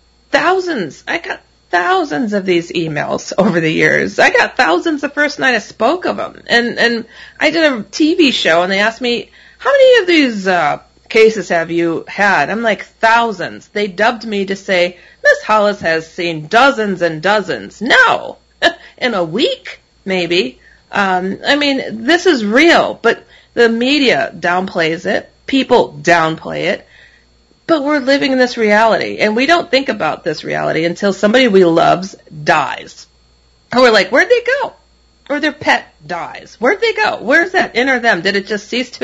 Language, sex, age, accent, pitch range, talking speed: English, female, 30-49, American, 180-260 Hz, 175 wpm